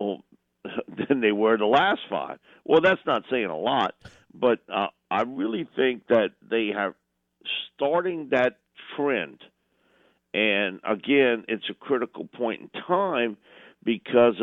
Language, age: English, 50-69